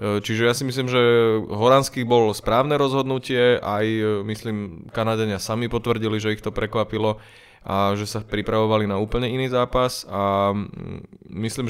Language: Slovak